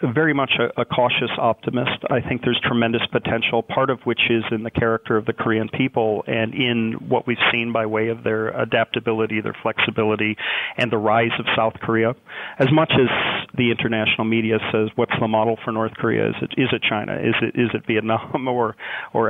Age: 40-59